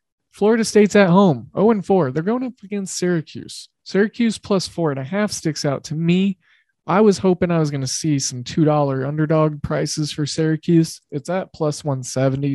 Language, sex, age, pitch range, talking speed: English, male, 20-39, 140-175 Hz, 165 wpm